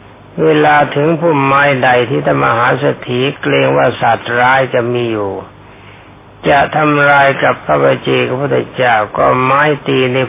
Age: 60-79